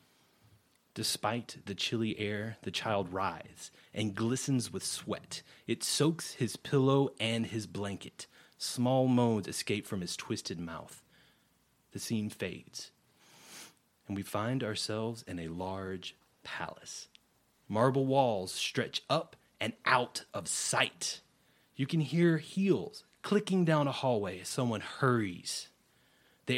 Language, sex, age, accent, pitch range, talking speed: English, male, 30-49, American, 100-130 Hz, 125 wpm